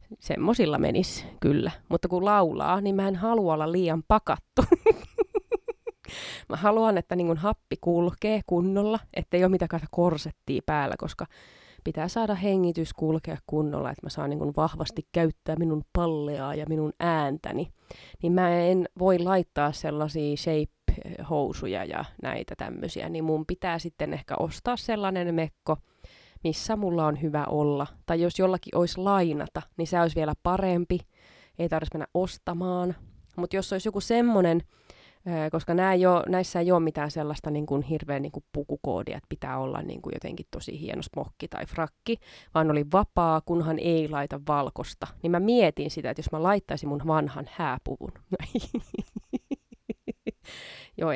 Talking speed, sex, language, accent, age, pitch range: 145 wpm, female, Finnish, native, 20-39, 155-185 Hz